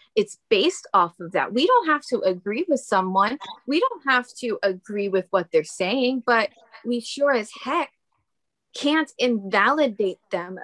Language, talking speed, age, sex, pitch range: English, 165 wpm, 20-39, female, 205-275 Hz